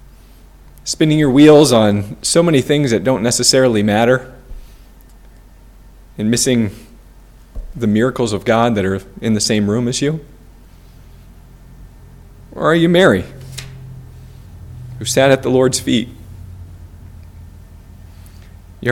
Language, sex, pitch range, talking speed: English, male, 100-145 Hz, 115 wpm